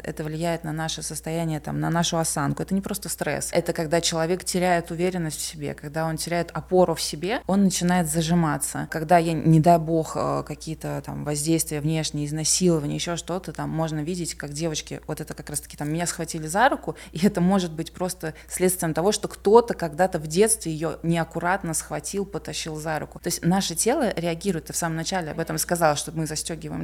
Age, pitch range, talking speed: 20-39, 155-180 Hz, 200 wpm